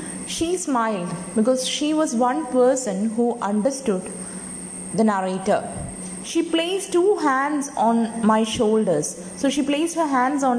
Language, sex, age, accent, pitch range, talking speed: English, female, 20-39, Indian, 205-275 Hz, 135 wpm